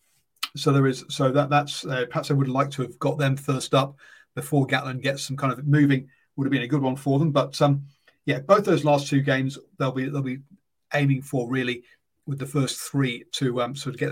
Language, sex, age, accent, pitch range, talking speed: English, male, 40-59, British, 135-155 Hz, 240 wpm